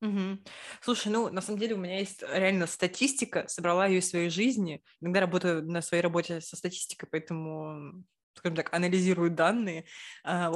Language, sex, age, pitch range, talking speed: Russian, female, 20-39, 160-190 Hz, 160 wpm